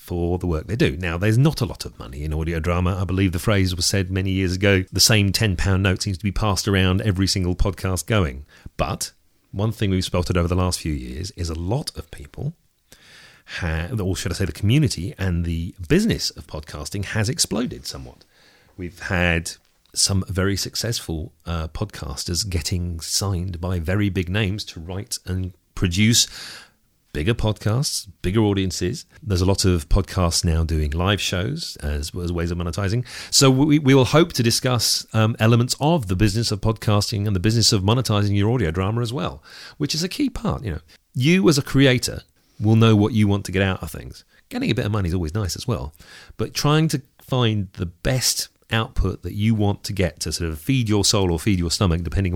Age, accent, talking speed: 40-59, British, 205 wpm